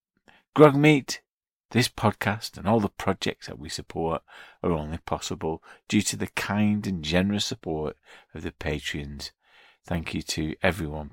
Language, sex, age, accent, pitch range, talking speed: English, male, 50-69, British, 80-110 Hz, 145 wpm